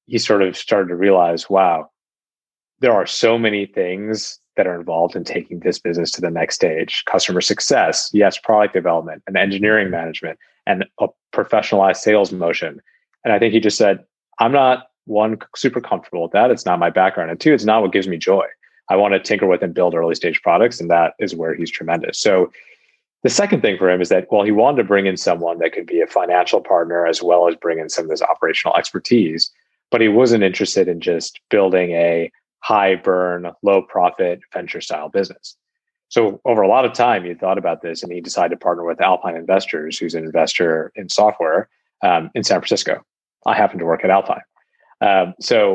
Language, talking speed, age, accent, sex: English, 205 wpm, 30-49, American, male